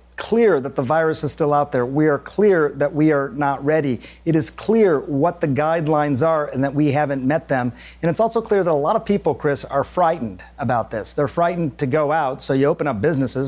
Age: 40-59